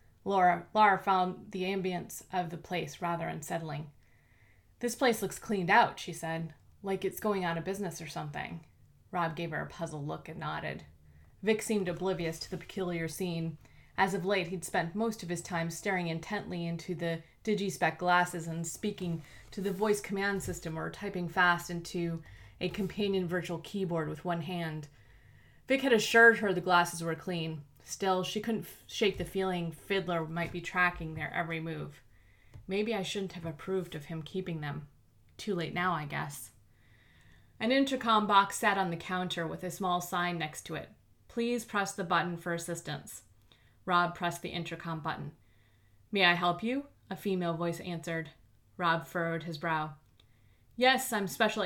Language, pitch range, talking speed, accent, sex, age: English, 160-190 Hz, 170 wpm, American, female, 20-39